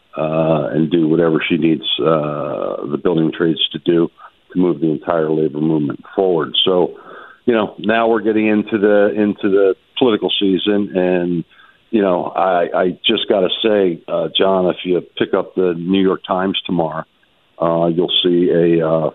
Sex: male